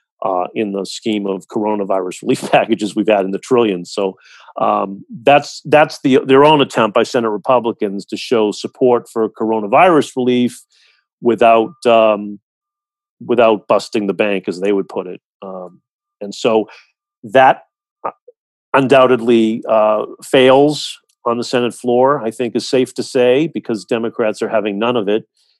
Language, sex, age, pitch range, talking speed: English, male, 40-59, 105-130 Hz, 150 wpm